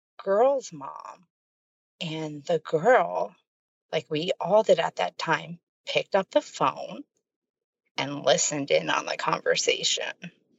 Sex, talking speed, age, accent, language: female, 125 wpm, 40-59, American, English